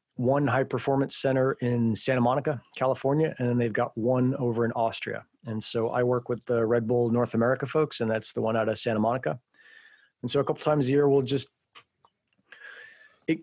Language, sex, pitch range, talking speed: English, male, 115-130 Hz, 200 wpm